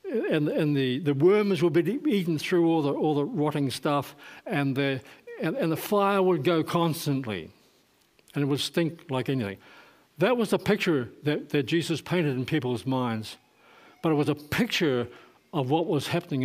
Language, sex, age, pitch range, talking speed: English, male, 60-79, 125-170 Hz, 180 wpm